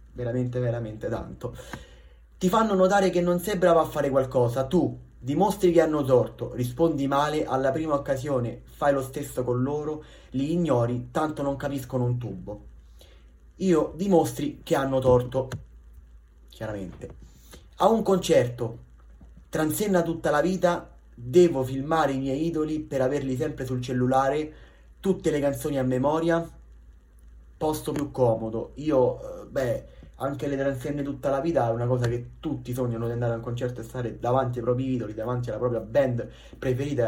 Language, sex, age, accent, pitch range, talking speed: Italian, male, 30-49, native, 115-155 Hz, 155 wpm